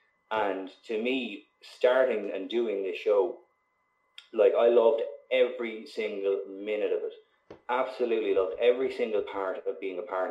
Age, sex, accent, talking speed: 30-49, male, Irish, 145 wpm